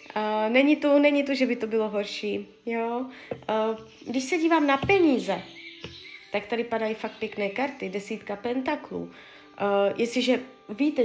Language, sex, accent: Czech, female, native